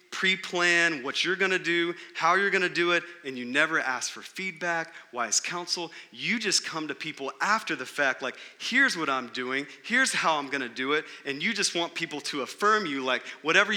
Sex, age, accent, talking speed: male, 30-49, American, 220 wpm